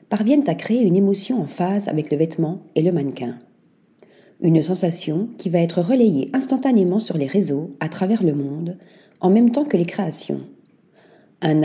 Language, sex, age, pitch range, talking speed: French, female, 40-59, 165-220 Hz, 175 wpm